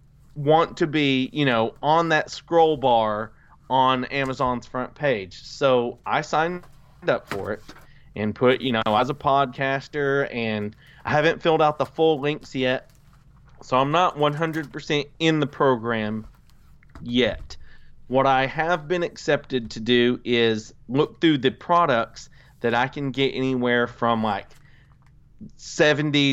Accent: American